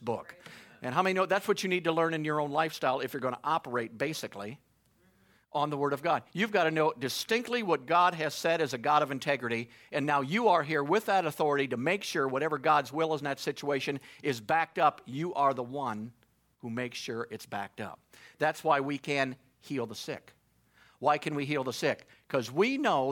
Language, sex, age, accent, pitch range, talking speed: English, male, 50-69, American, 135-175 Hz, 225 wpm